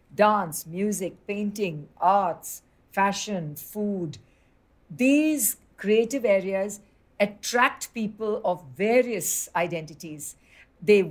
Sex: female